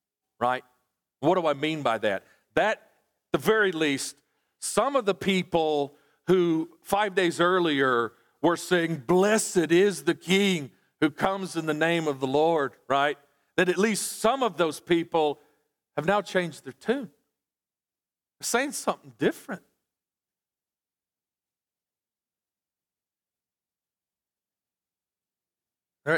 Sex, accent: male, American